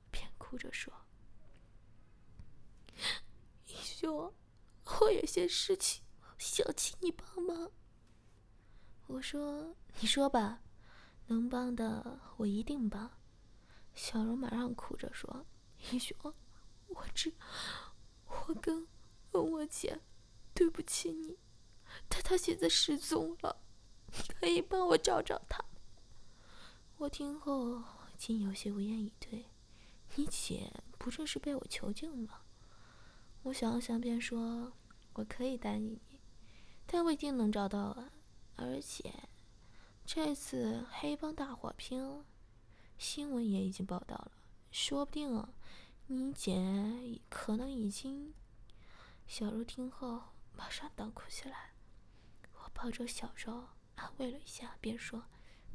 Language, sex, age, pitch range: Chinese, female, 20-39, 215-295 Hz